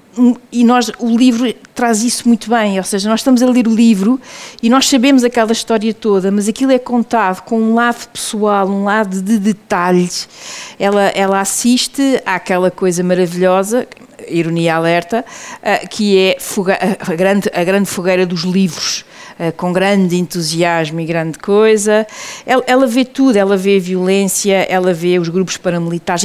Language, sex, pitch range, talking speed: Portuguese, female, 180-230 Hz, 155 wpm